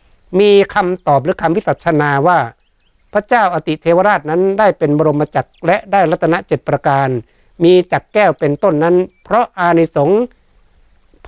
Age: 60-79